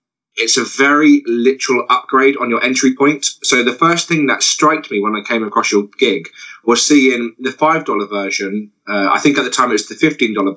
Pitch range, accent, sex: 110-145 Hz, British, male